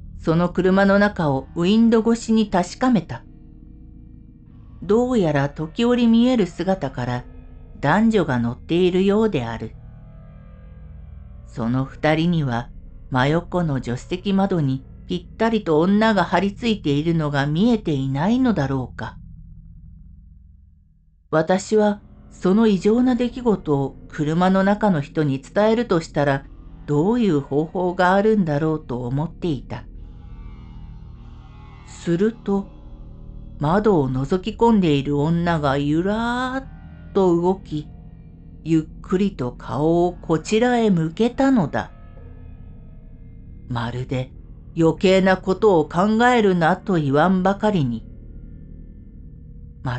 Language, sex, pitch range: Japanese, female, 125-190 Hz